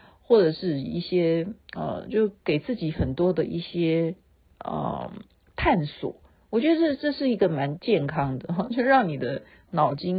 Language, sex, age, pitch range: Chinese, female, 50-69, 150-210 Hz